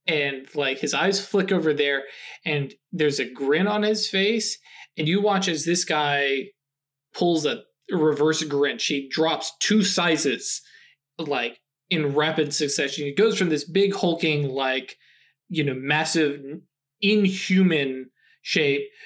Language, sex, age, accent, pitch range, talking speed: English, male, 20-39, American, 140-180 Hz, 140 wpm